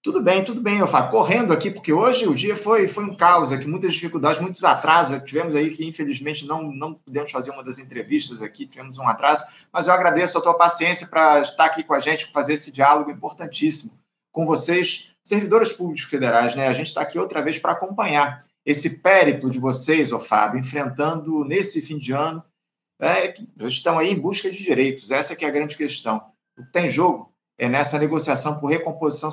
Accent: Brazilian